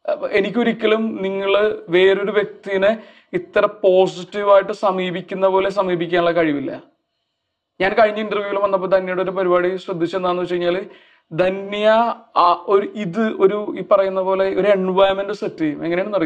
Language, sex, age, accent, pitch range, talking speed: English, male, 30-49, Indian, 175-205 Hz, 90 wpm